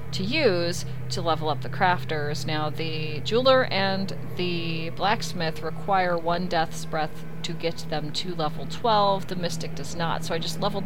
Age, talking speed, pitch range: 30-49, 170 wpm, 155-190 Hz